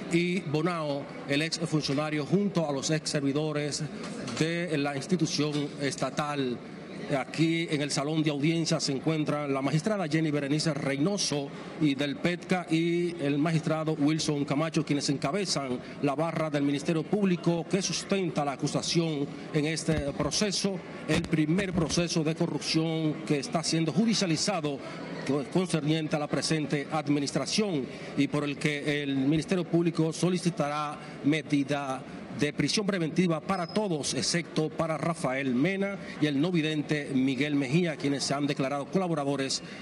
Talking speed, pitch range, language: 140 wpm, 145-170 Hz, Spanish